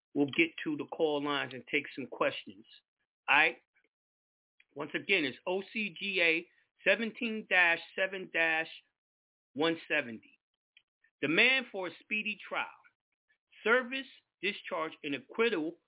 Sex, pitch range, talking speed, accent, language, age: male, 160-245 Hz, 100 wpm, American, English, 40-59